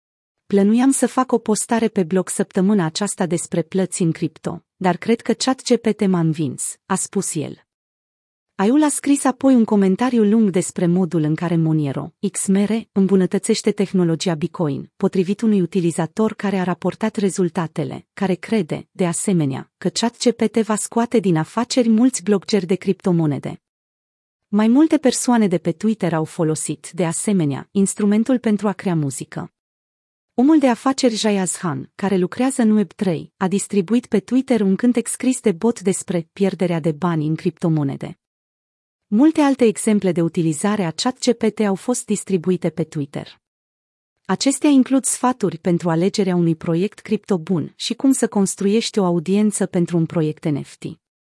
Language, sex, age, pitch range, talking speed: Romanian, female, 30-49, 170-220 Hz, 150 wpm